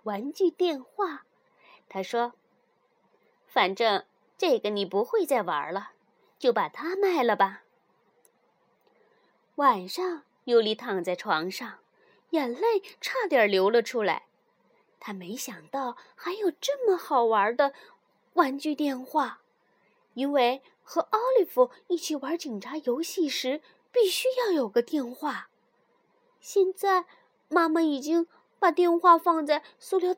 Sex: female